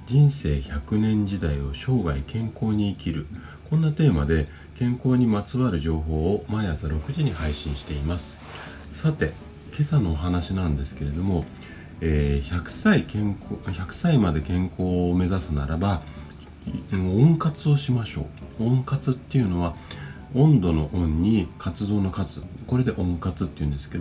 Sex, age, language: male, 40-59, Japanese